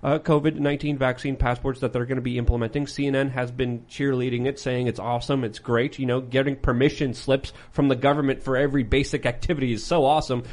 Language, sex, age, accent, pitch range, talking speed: English, male, 30-49, American, 120-145 Hz, 200 wpm